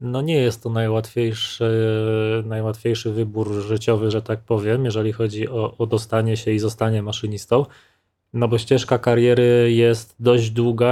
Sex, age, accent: male, 20-39, native